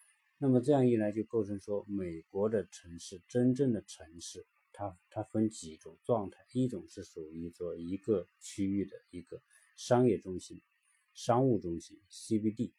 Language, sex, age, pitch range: Chinese, male, 50-69, 90-115 Hz